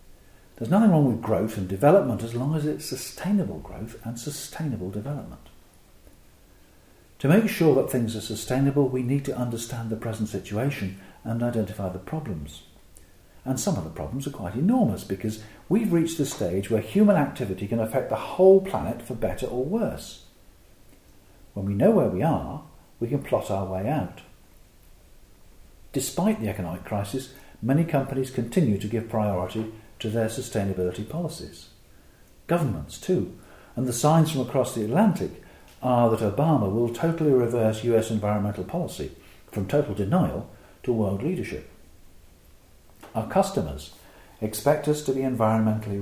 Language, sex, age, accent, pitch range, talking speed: English, male, 50-69, British, 95-130 Hz, 150 wpm